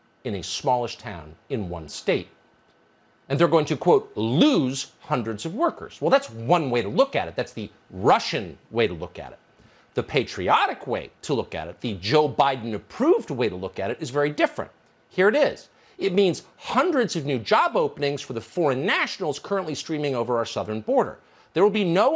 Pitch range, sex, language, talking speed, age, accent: 125-200 Hz, male, English, 205 wpm, 50-69, American